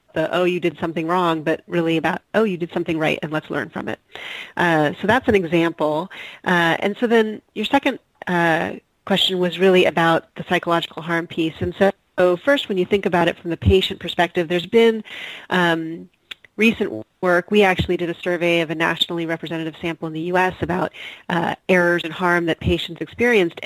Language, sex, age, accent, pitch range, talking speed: English, female, 30-49, American, 165-185 Hz, 195 wpm